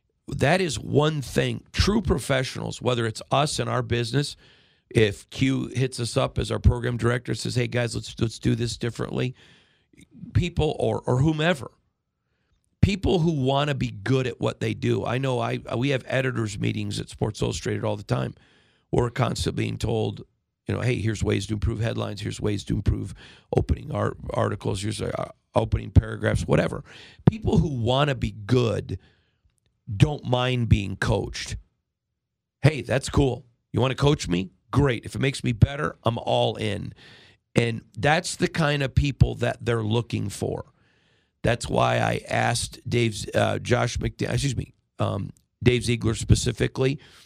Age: 50-69